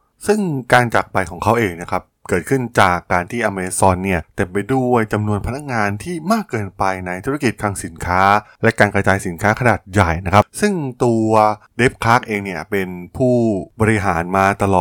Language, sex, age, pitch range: Thai, male, 20-39, 95-115 Hz